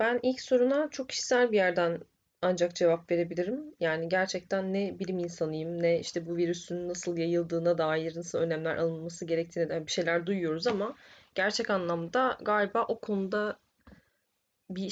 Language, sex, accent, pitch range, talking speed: Turkish, female, native, 170-220 Hz, 145 wpm